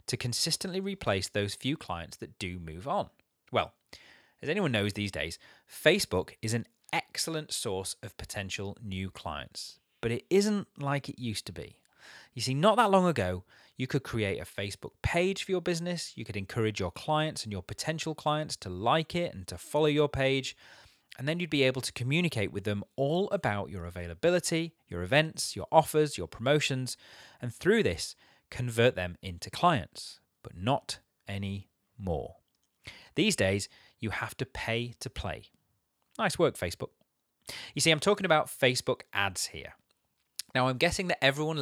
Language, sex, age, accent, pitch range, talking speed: English, male, 30-49, British, 100-155 Hz, 170 wpm